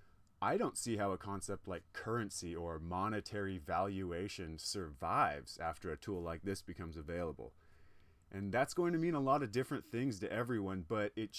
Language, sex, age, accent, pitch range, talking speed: English, male, 30-49, American, 90-115 Hz, 175 wpm